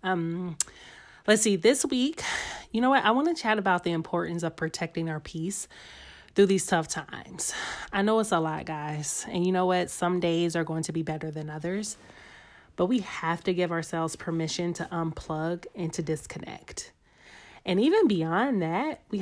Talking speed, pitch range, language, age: 185 wpm, 170-225 Hz, English, 30-49